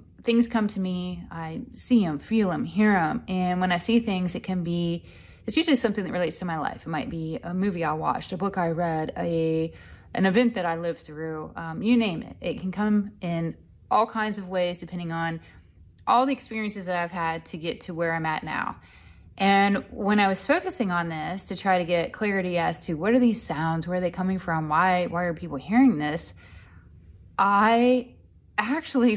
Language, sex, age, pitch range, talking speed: English, female, 20-39, 165-210 Hz, 210 wpm